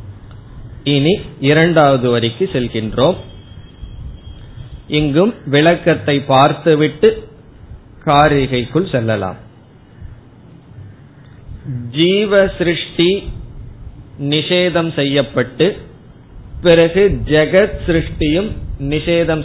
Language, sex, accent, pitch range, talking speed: Tamil, male, native, 120-175 Hz, 50 wpm